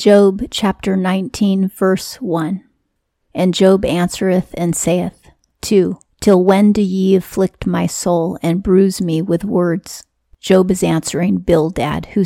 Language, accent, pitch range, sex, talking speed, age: English, American, 165-190 Hz, female, 135 wpm, 40-59